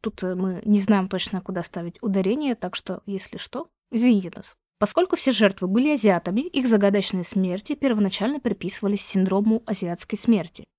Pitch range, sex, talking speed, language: 195-240 Hz, female, 150 wpm, Russian